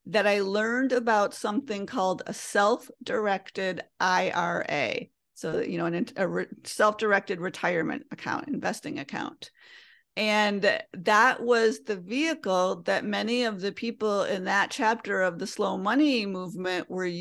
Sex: female